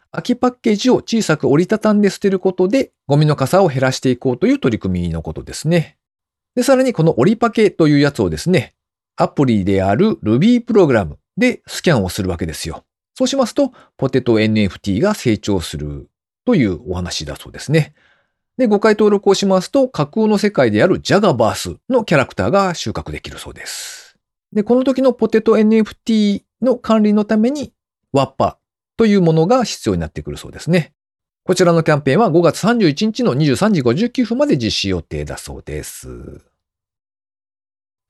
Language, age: Japanese, 40-59